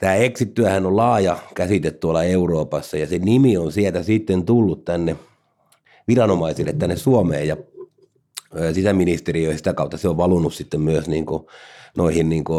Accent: native